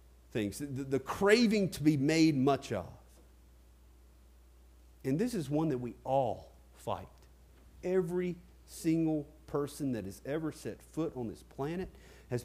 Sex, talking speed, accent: male, 140 wpm, American